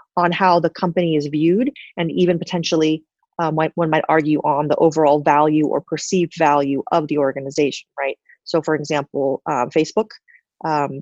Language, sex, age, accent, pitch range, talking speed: English, female, 30-49, American, 155-185 Hz, 165 wpm